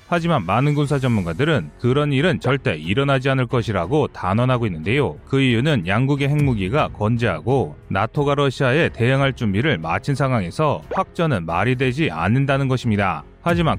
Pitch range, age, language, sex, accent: 110-150 Hz, 30-49, Korean, male, native